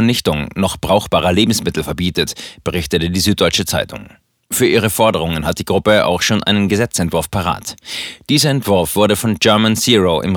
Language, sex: German, male